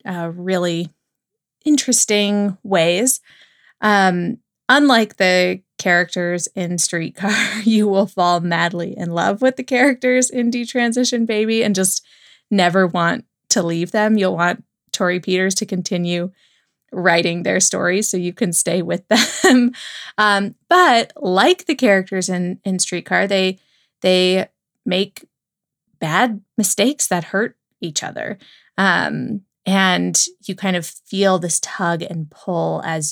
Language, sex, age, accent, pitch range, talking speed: English, female, 20-39, American, 175-215 Hz, 130 wpm